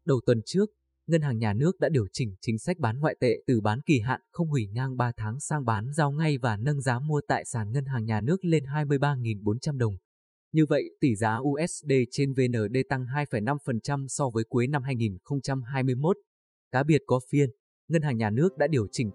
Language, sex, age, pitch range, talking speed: Vietnamese, male, 20-39, 115-145 Hz, 205 wpm